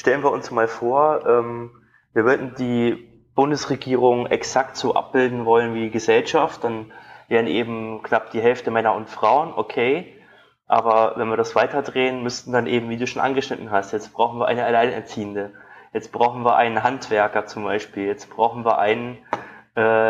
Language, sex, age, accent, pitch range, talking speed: German, male, 20-39, German, 115-140 Hz, 170 wpm